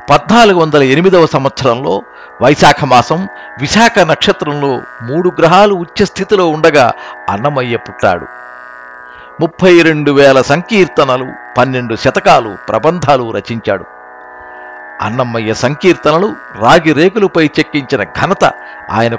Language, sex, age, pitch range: Telugu, male, 50-69, 120-165 Hz